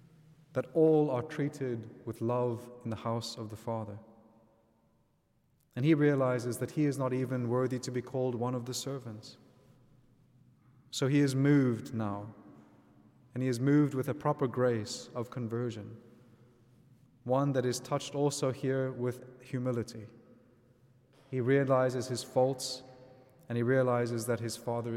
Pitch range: 115-135 Hz